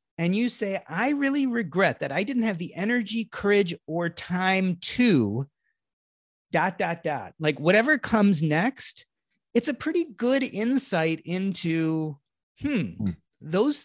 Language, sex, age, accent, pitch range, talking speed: English, male, 30-49, American, 155-205 Hz, 135 wpm